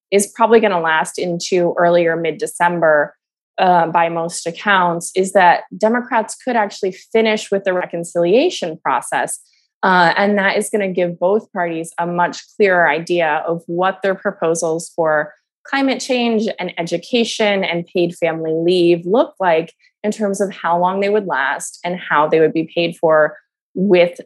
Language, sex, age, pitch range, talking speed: English, female, 20-39, 170-220 Hz, 165 wpm